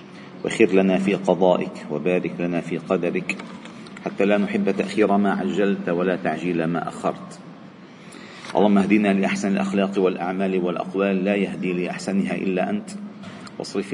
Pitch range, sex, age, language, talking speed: 90-110 Hz, male, 40-59, Arabic, 130 wpm